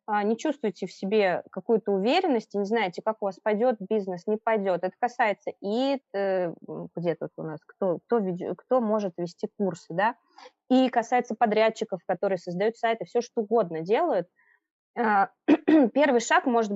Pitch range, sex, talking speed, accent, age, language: 185-240 Hz, female, 145 wpm, native, 20-39, Russian